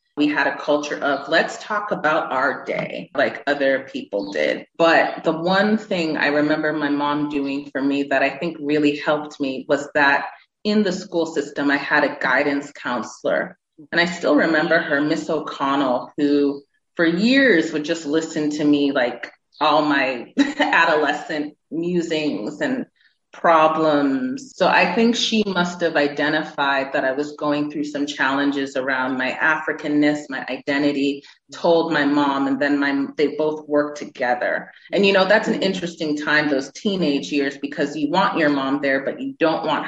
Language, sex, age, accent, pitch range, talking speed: English, female, 30-49, American, 140-165 Hz, 170 wpm